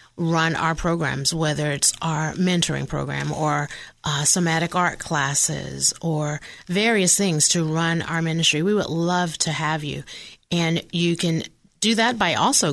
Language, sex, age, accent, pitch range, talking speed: English, female, 30-49, American, 155-185 Hz, 155 wpm